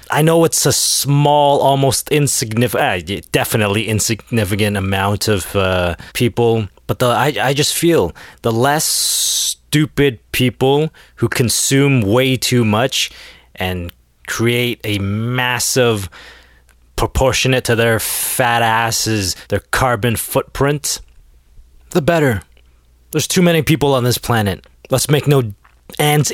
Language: English